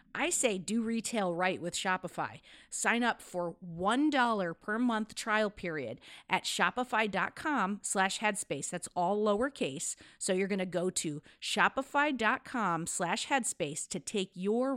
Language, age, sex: English, 40-59, female